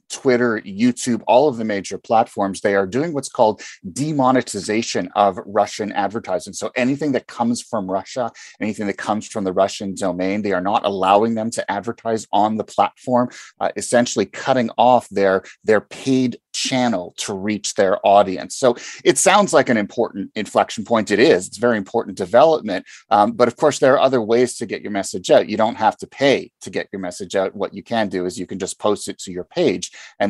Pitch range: 100-120 Hz